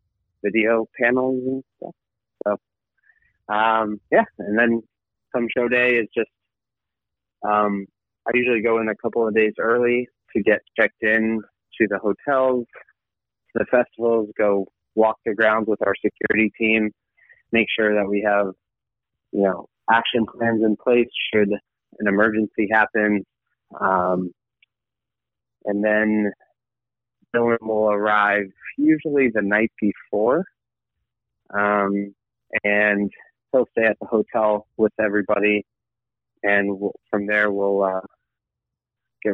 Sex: male